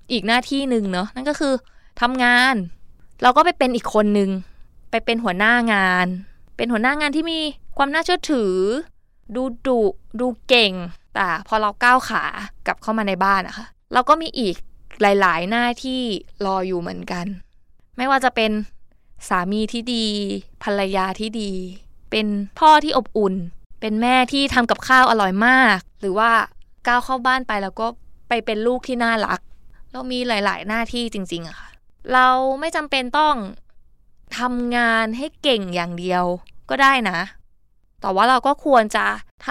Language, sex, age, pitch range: Thai, female, 20-39, 205-265 Hz